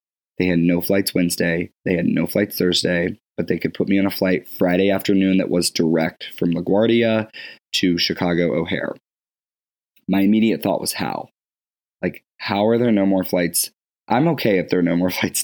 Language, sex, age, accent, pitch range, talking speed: English, male, 20-39, American, 90-105 Hz, 185 wpm